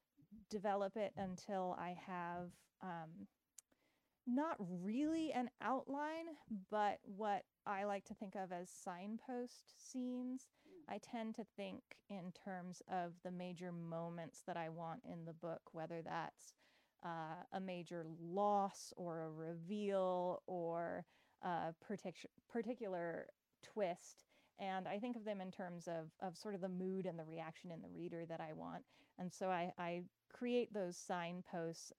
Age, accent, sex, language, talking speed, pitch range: 30-49, American, female, English, 145 wpm, 170-210 Hz